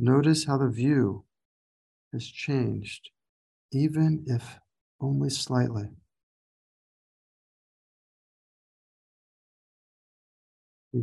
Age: 50-69